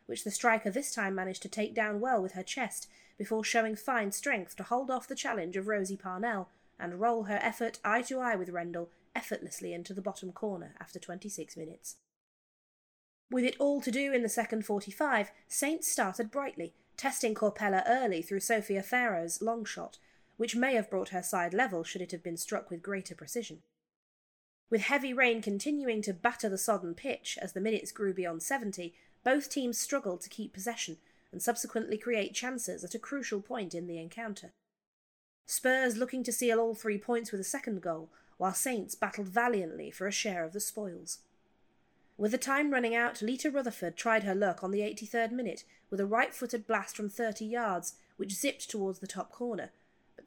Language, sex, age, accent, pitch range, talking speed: English, female, 30-49, British, 185-235 Hz, 185 wpm